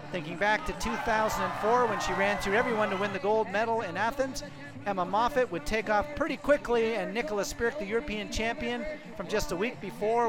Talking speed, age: 200 wpm, 40-59